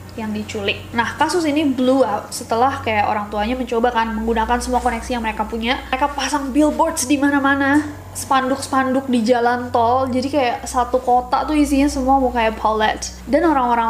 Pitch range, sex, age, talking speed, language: 230-275 Hz, female, 20-39, 170 wpm, Indonesian